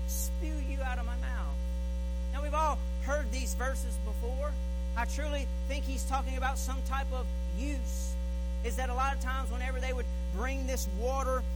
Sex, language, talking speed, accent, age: male, English, 180 wpm, American, 40-59